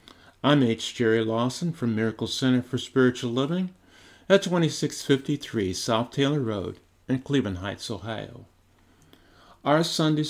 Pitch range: 95-135 Hz